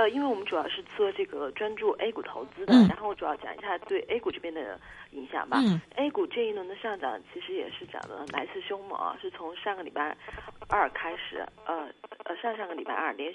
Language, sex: Chinese, female